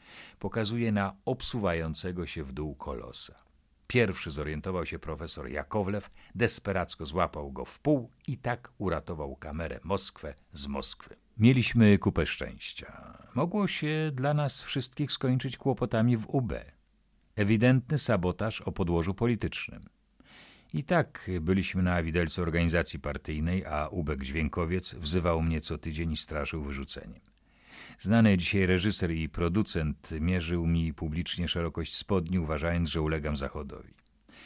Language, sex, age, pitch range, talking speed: Polish, male, 50-69, 80-110 Hz, 125 wpm